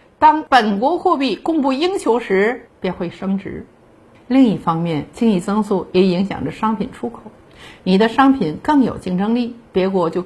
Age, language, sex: 50-69, Chinese, female